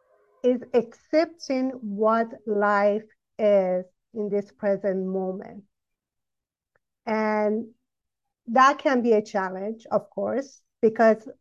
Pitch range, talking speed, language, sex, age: 200-235 Hz, 95 wpm, English, female, 50-69